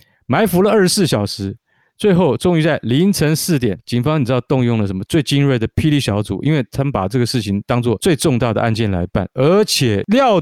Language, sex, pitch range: Chinese, male, 110-165 Hz